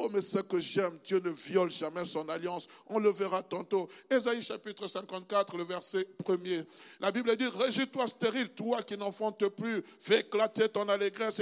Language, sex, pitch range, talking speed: French, male, 180-210 Hz, 180 wpm